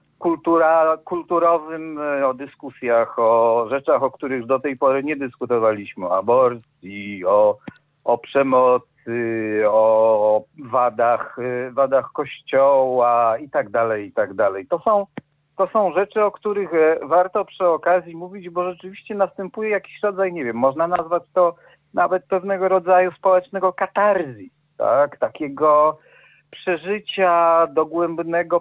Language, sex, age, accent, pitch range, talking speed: Polish, male, 50-69, native, 135-180 Hz, 115 wpm